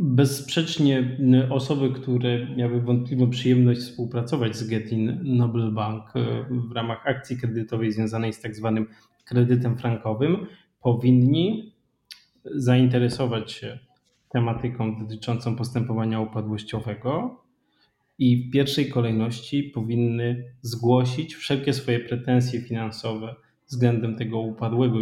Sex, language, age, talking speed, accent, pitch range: male, Polish, 20-39, 100 wpm, native, 115-130 Hz